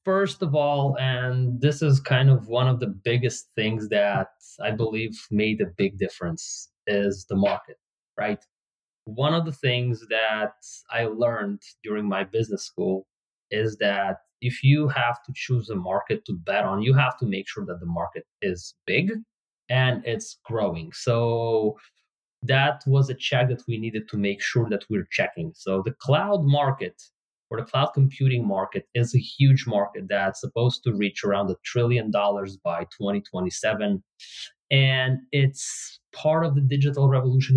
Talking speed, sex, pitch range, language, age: 165 wpm, male, 105-135 Hz, English, 20-39